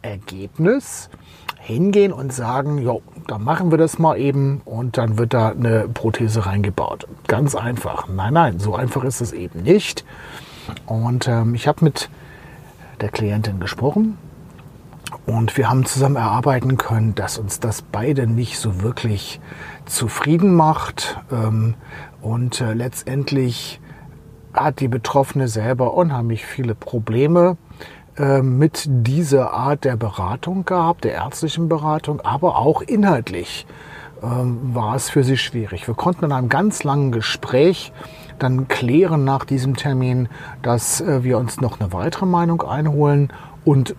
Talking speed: 135 wpm